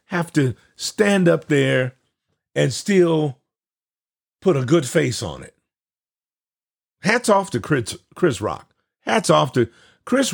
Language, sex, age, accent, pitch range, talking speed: English, male, 50-69, American, 120-175 Hz, 135 wpm